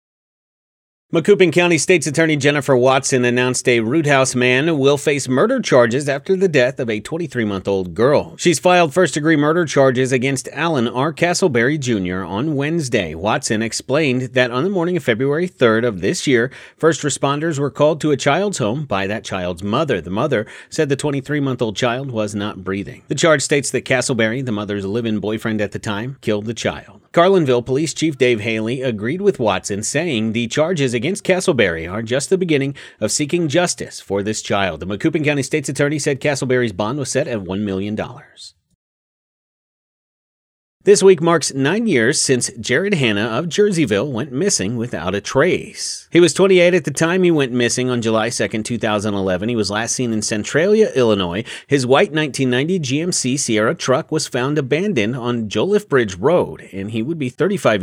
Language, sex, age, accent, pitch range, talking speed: English, male, 40-59, American, 110-155 Hz, 175 wpm